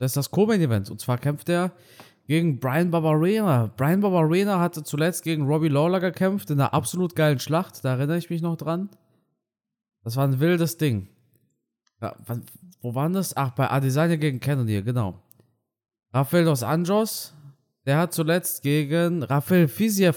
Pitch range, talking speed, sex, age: 130-170 Hz, 165 wpm, male, 20-39